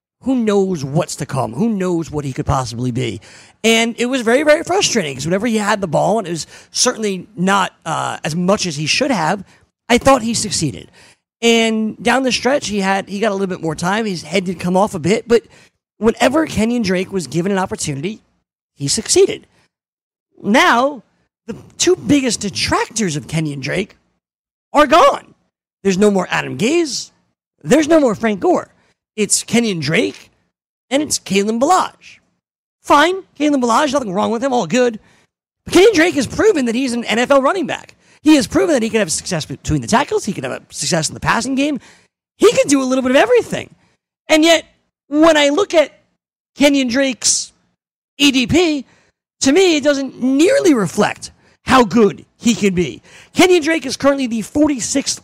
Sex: male